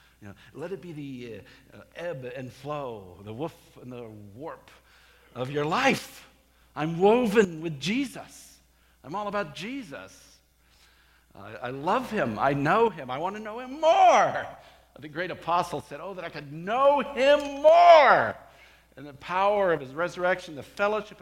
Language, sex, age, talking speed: English, male, 50-69, 160 wpm